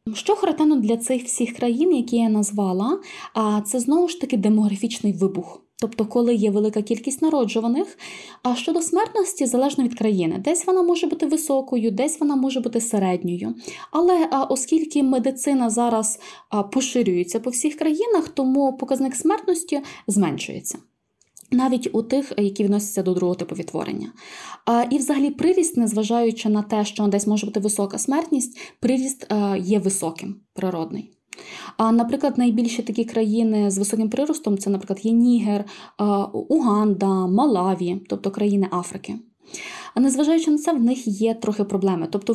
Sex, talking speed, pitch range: female, 140 wpm, 210-290 Hz